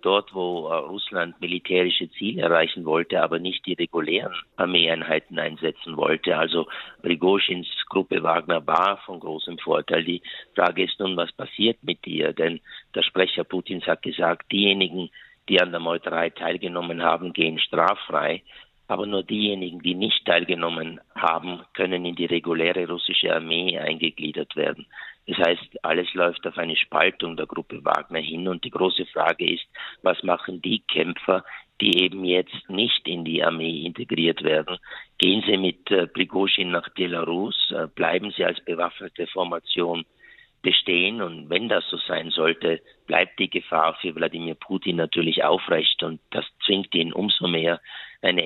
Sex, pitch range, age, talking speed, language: male, 85-90 Hz, 50-69, 155 wpm, German